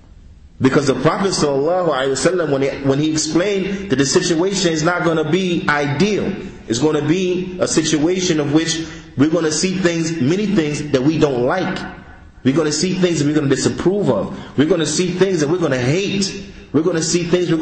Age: 30-49